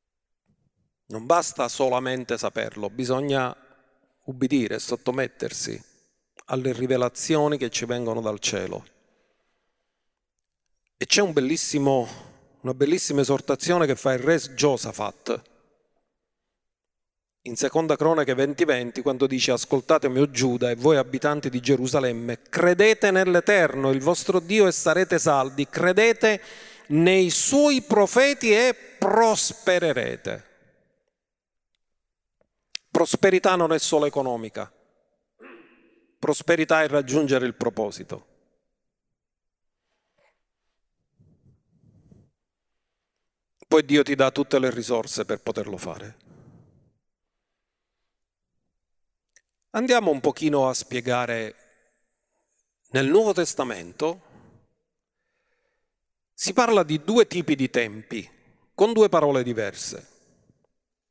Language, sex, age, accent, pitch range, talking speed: Italian, male, 40-59, native, 130-180 Hz, 90 wpm